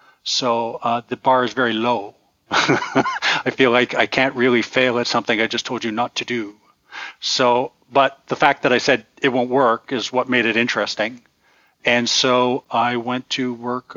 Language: English